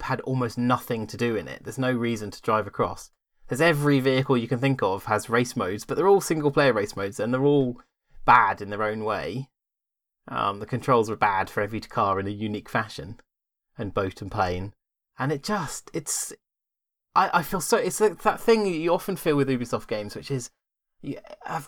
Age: 20-39